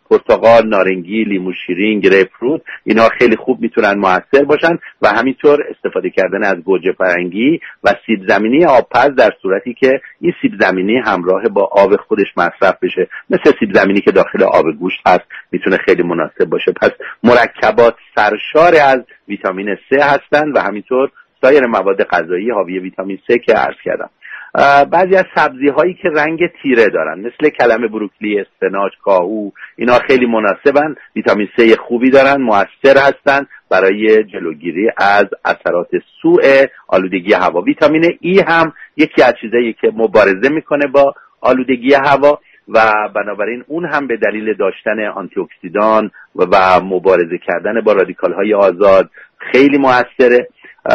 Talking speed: 145 wpm